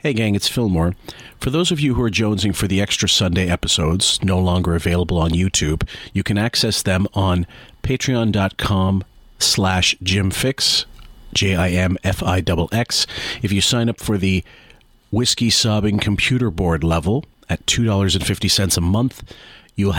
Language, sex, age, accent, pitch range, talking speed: English, male, 40-59, American, 90-110 Hz, 140 wpm